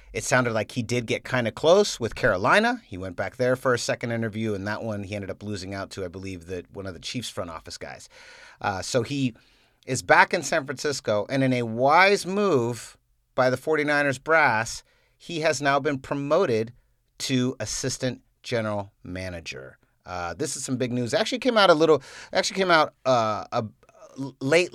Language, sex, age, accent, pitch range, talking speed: English, male, 40-59, American, 95-135 Hz, 195 wpm